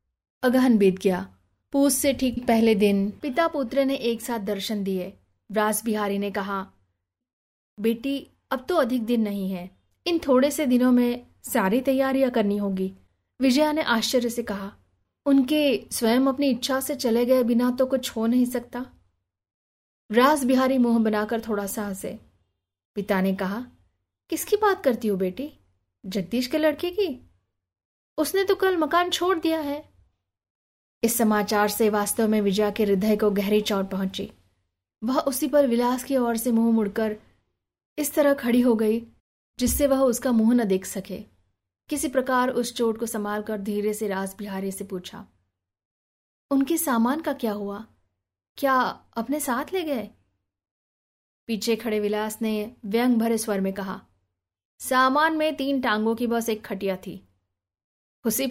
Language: Hindi